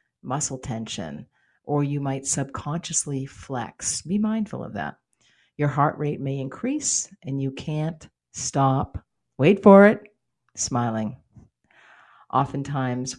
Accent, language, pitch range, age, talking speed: American, English, 130-160 Hz, 50-69, 115 wpm